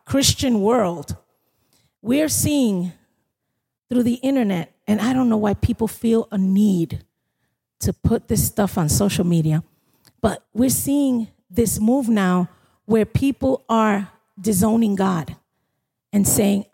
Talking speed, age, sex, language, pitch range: 130 wpm, 40-59, female, English, 185-255 Hz